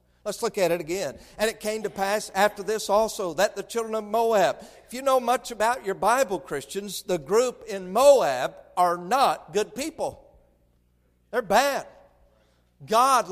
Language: English